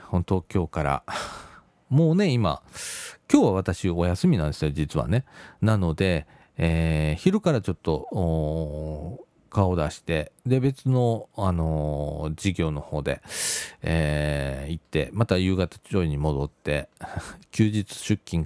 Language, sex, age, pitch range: Japanese, male, 40-59, 85-120 Hz